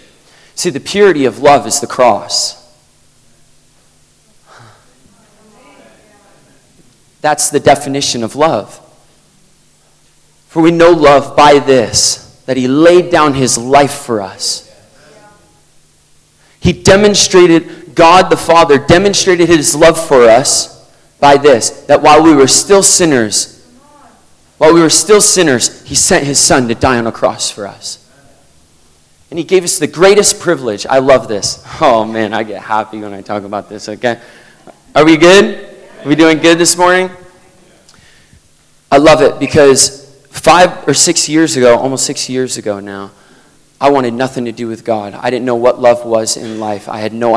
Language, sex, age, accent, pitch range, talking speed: English, male, 30-49, American, 110-160 Hz, 155 wpm